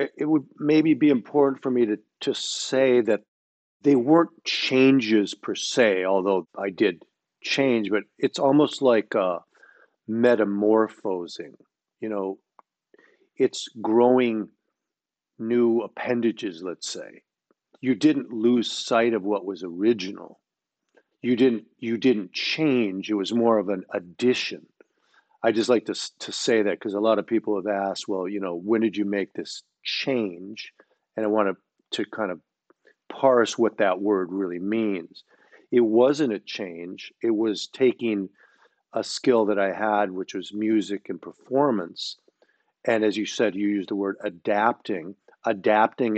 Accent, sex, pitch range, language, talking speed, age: American, male, 100-125 Hz, English, 150 wpm, 50-69